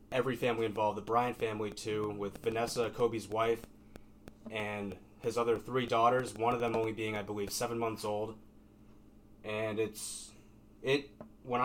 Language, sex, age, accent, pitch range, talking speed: English, male, 20-39, American, 105-125 Hz, 155 wpm